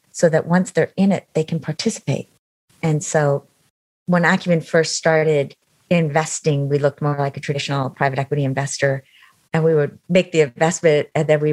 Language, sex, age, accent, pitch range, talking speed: English, female, 40-59, American, 140-165 Hz, 175 wpm